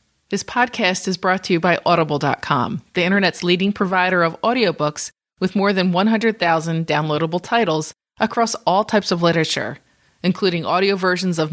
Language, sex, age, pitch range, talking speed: English, female, 30-49, 160-200 Hz, 150 wpm